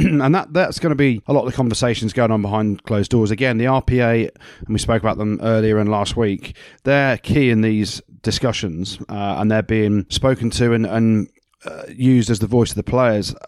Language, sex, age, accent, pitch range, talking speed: English, male, 30-49, British, 110-130 Hz, 220 wpm